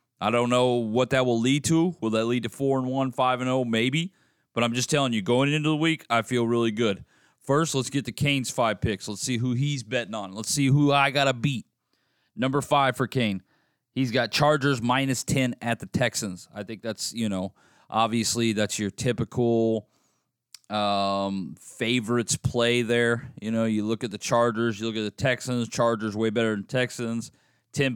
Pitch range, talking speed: 110-130 Hz, 200 wpm